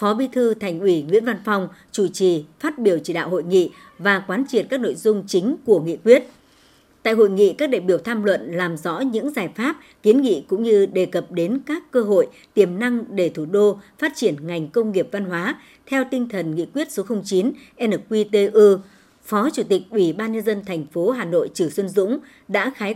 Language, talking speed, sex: Vietnamese, 220 wpm, male